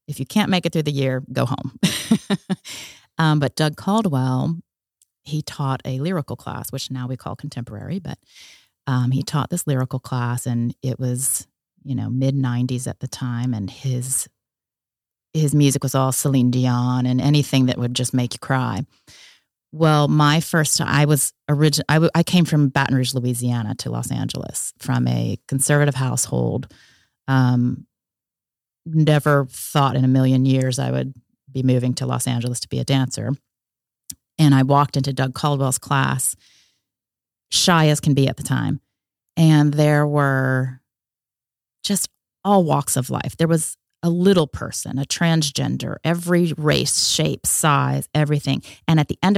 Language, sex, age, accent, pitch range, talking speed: English, female, 30-49, American, 125-150 Hz, 160 wpm